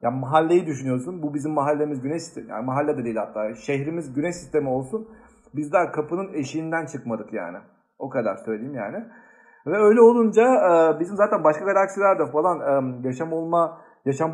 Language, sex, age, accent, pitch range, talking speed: Turkish, male, 50-69, native, 140-175 Hz, 165 wpm